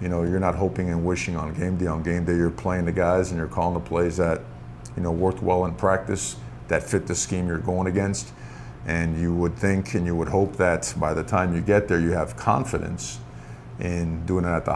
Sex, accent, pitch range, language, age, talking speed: male, American, 85-100 Hz, English, 50-69, 240 wpm